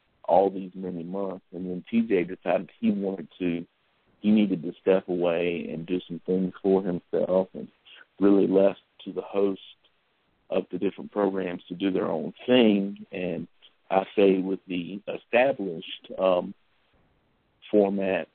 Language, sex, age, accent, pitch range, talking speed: English, male, 50-69, American, 90-100 Hz, 145 wpm